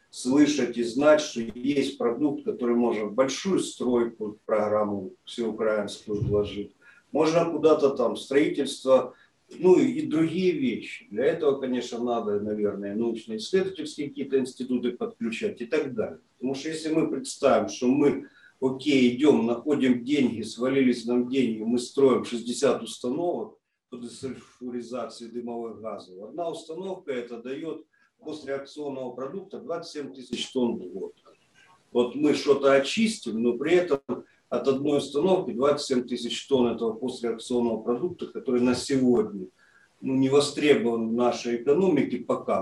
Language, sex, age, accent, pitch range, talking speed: Ukrainian, male, 50-69, native, 120-145 Hz, 130 wpm